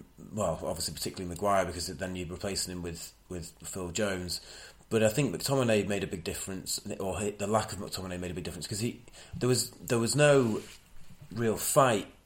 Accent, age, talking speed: British, 30-49, 195 wpm